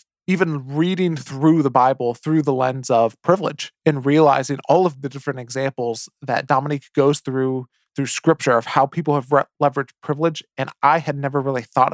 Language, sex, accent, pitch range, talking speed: English, male, American, 135-155 Hz, 175 wpm